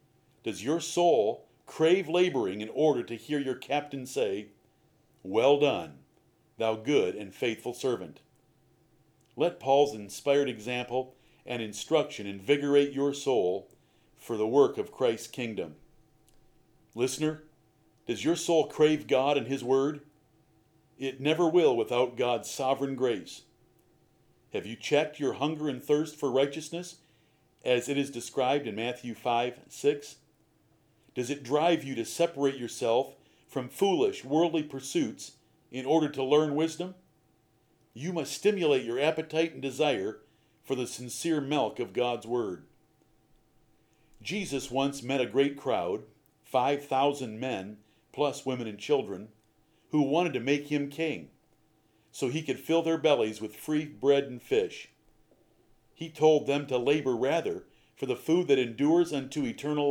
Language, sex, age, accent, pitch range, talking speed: English, male, 50-69, American, 125-155 Hz, 140 wpm